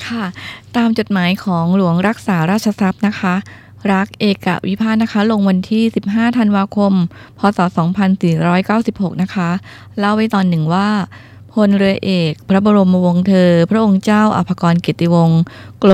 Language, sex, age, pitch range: Thai, female, 20-39, 175-205 Hz